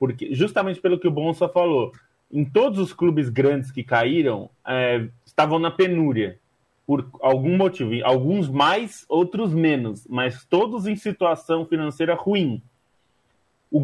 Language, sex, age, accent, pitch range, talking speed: Portuguese, male, 20-39, Brazilian, 120-165 Hz, 135 wpm